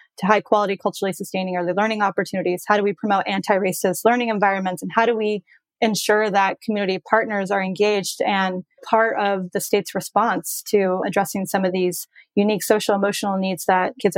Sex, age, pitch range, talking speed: female, 20-39, 195-220 Hz, 170 wpm